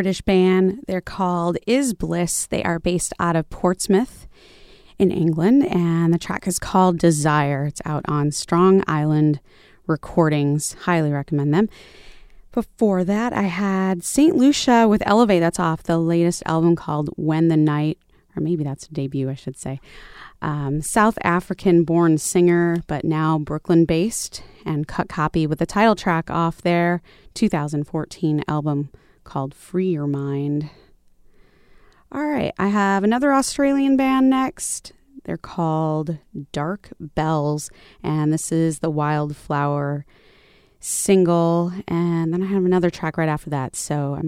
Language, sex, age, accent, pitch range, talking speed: English, female, 30-49, American, 150-190 Hz, 145 wpm